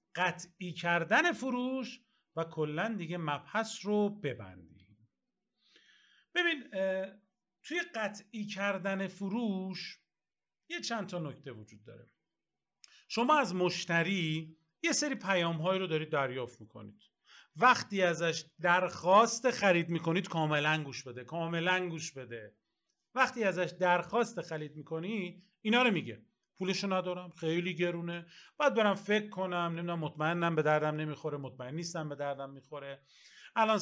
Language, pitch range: Persian, 140-200 Hz